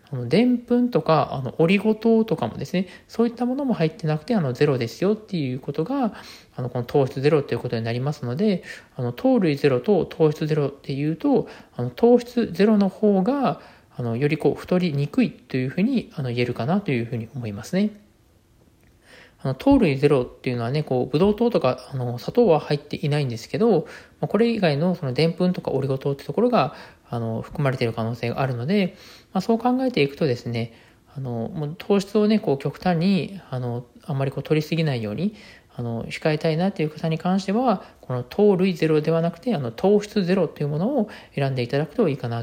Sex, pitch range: male, 125-200 Hz